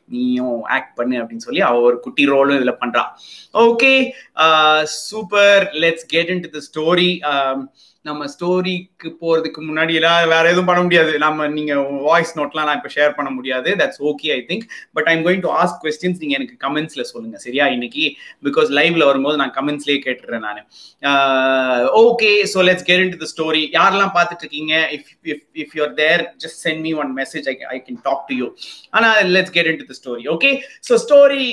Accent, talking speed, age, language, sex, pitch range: native, 40 wpm, 30-49, Tamil, male, 145-190 Hz